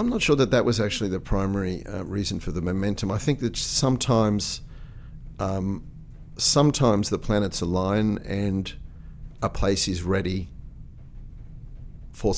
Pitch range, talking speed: 90-105 Hz, 140 wpm